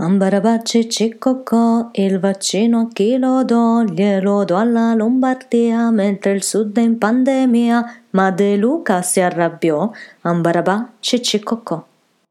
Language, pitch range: Italian, 155-210 Hz